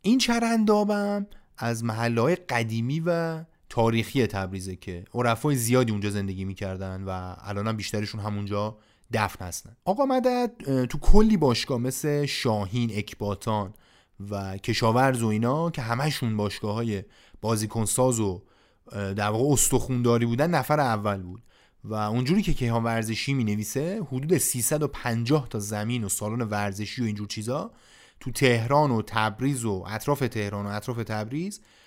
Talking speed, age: 145 wpm, 30-49